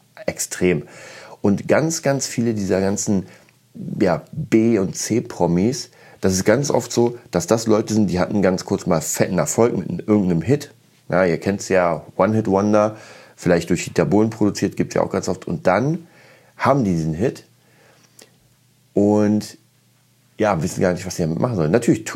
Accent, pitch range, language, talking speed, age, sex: German, 90-110 Hz, German, 170 wpm, 30-49, male